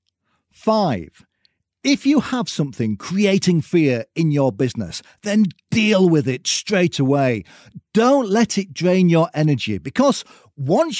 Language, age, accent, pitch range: English, 40-59, British, 130-215 Hz